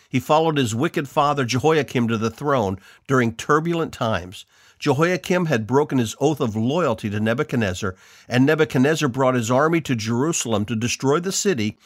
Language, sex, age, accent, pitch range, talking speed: English, male, 50-69, American, 115-150 Hz, 160 wpm